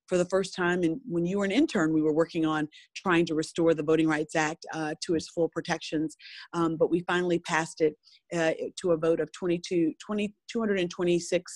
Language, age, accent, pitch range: English, 40-59, American, 165-185 Hz